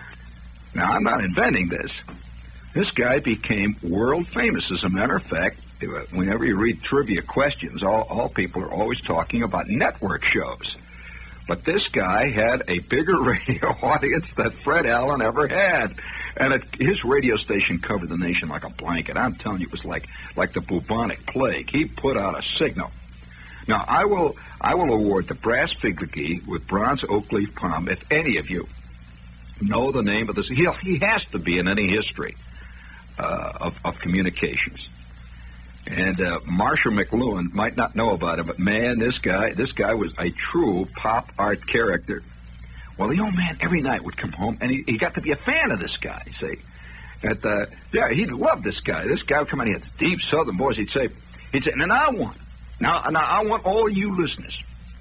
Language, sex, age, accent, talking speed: English, male, 60-79, American, 190 wpm